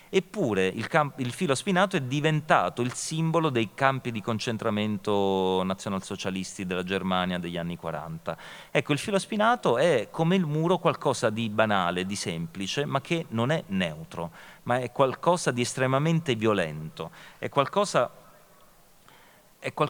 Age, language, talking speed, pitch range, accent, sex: 40-59, Italian, 135 wpm, 100-155 Hz, native, male